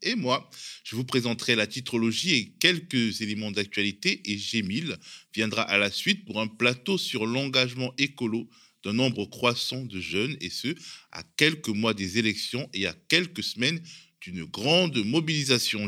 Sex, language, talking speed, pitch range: male, French, 160 wpm, 110-150 Hz